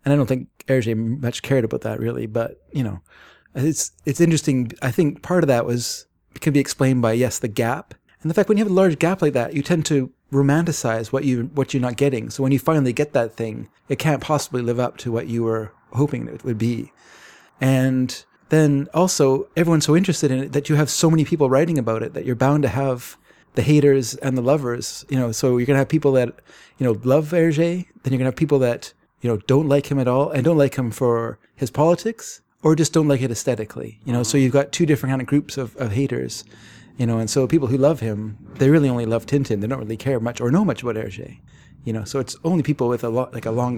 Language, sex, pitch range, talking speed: English, male, 115-145 Hz, 255 wpm